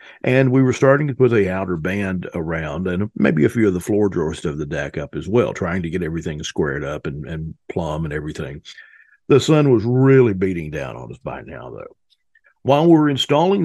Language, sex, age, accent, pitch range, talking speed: English, male, 50-69, American, 95-130 Hz, 220 wpm